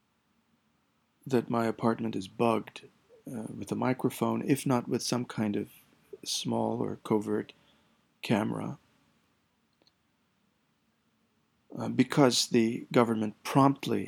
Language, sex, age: English, male, 40-59